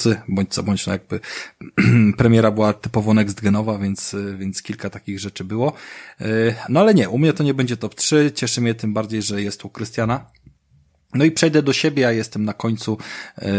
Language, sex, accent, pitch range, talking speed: Polish, male, native, 100-125 Hz, 190 wpm